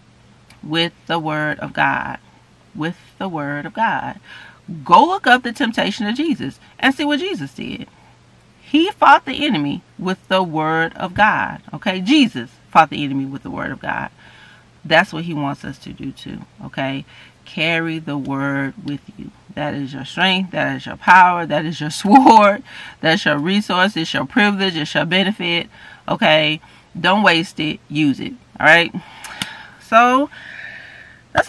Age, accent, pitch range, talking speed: 40-59, American, 145-200 Hz, 165 wpm